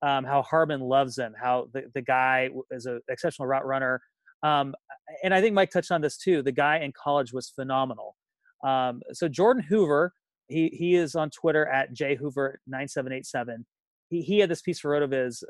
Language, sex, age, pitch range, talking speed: English, male, 30-49, 130-165 Hz, 180 wpm